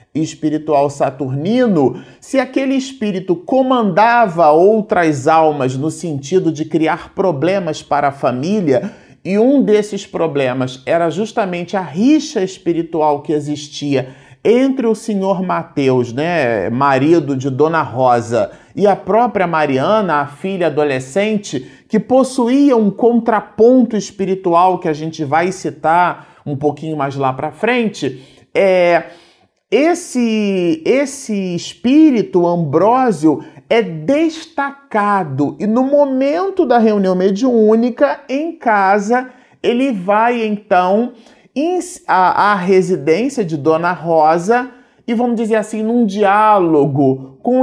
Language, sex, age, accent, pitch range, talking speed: Portuguese, male, 40-59, Brazilian, 160-235 Hz, 115 wpm